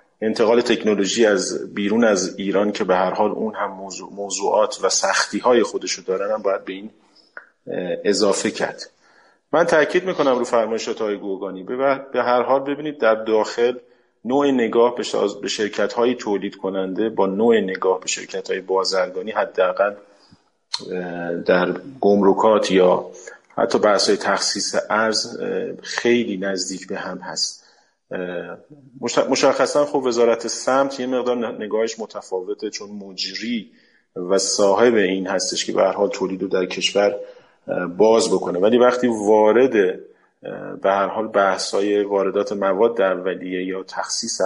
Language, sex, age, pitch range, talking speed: Persian, male, 40-59, 100-135 Hz, 135 wpm